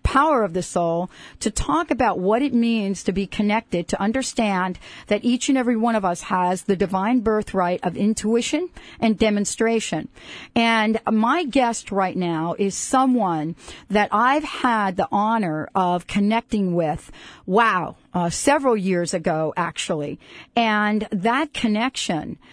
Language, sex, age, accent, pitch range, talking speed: English, female, 50-69, American, 185-230 Hz, 145 wpm